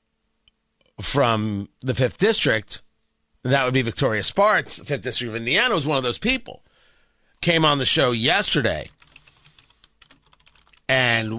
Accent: American